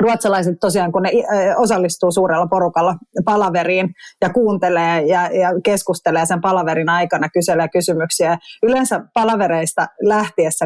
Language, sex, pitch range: Finnish, female, 170-205 Hz